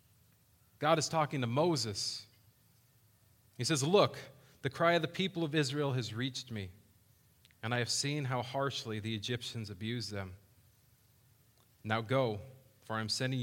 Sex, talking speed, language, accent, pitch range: male, 145 wpm, English, American, 110-135 Hz